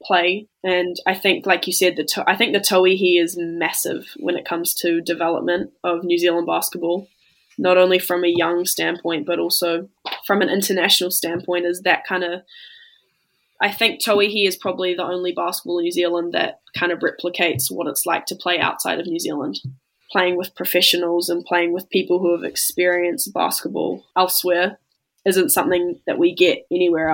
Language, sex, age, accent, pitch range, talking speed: English, female, 10-29, Australian, 175-185 Hz, 185 wpm